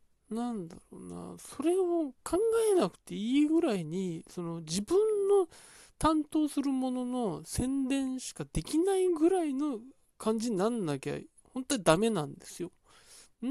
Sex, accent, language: male, native, Japanese